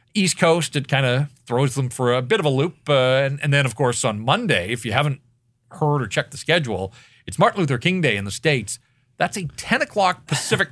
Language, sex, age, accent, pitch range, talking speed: English, male, 40-59, American, 120-165 Hz, 235 wpm